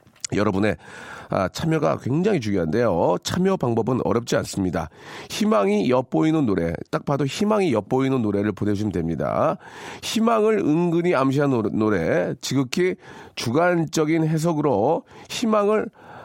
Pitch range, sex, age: 135-200 Hz, male, 40-59